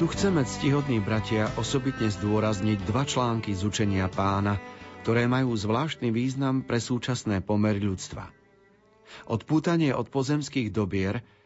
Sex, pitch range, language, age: male, 100-135 Hz, Slovak, 40-59